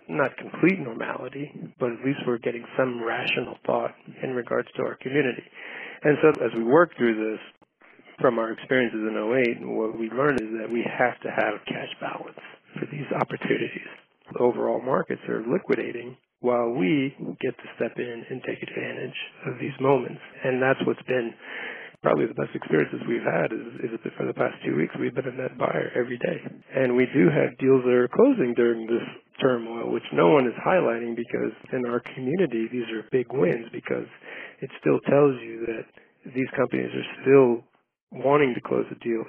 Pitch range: 115-135 Hz